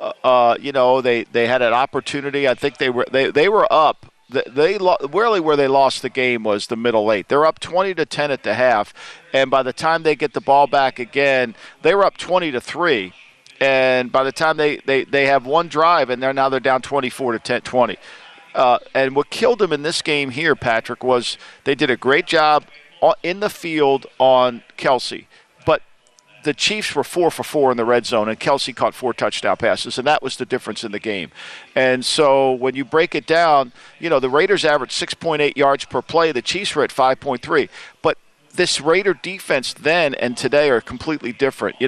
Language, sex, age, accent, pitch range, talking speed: English, male, 50-69, American, 130-155 Hz, 215 wpm